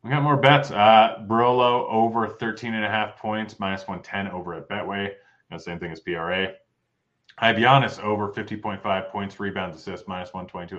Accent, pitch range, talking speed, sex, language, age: American, 85-110 Hz, 165 wpm, male, English, 30-49